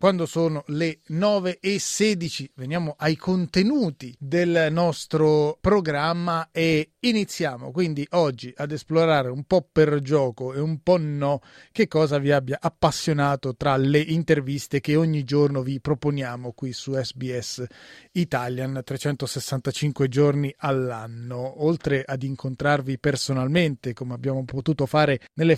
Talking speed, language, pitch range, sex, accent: 130 wpm, Italian, 135-160 Hz, male, native